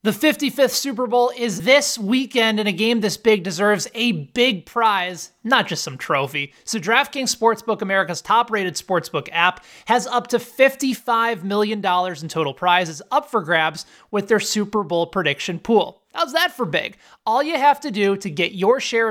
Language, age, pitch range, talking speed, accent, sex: English, 20-39, 190-255 Hz, 180 wpm, American, male